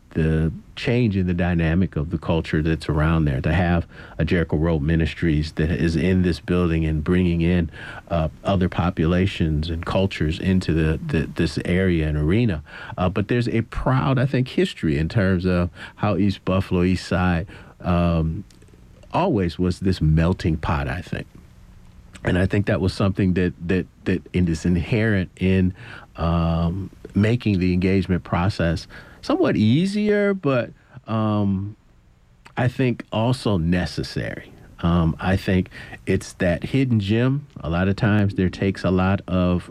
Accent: American